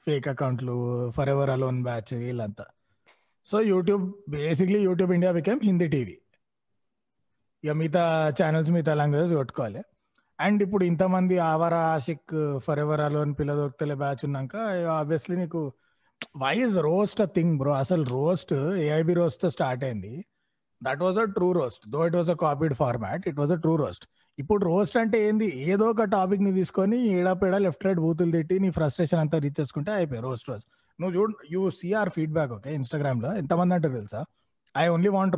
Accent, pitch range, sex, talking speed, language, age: native, 140-185 Hz, male, 155 wpm, Telugu, 30-49